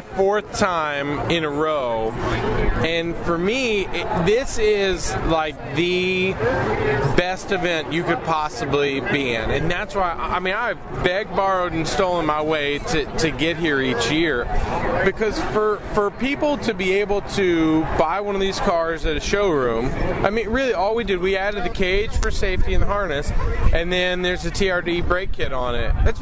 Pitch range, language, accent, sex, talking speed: 135-190 Hz, English, American, male, 180 wpm